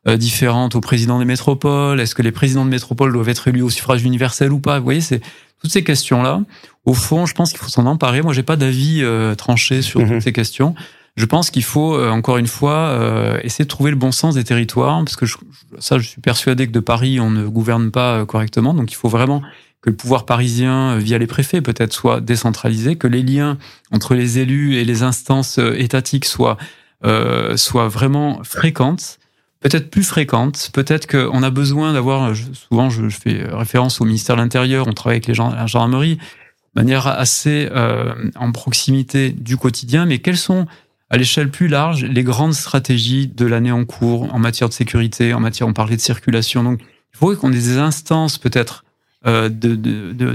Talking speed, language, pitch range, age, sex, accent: 205 wpm, French, 115-140 Hz, 30-49, male, French